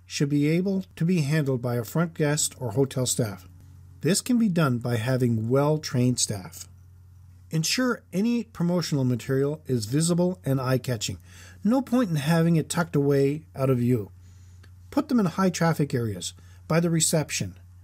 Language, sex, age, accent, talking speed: English, male, 50-69, American, 160 wpm